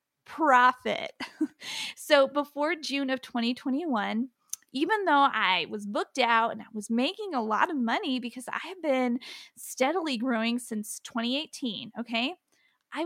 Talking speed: 140 wpm